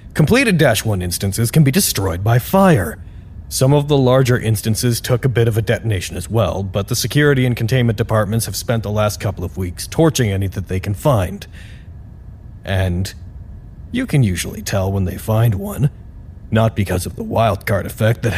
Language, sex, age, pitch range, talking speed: English, male, 30-49, 95-125 Hz, 185 wpm